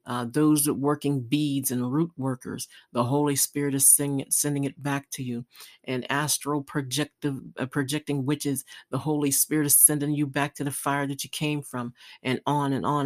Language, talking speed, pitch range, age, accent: English, 190 wpm, 130-150 Hz, 50-69, American